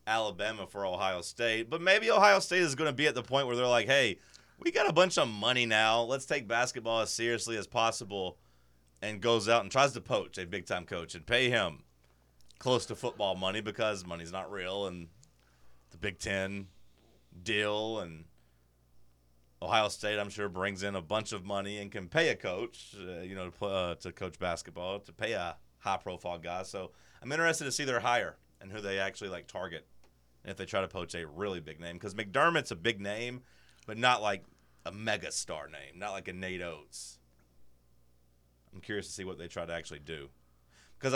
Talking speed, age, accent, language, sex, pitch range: 200 wpm, 30-49, American, English, male, 75-115 Hz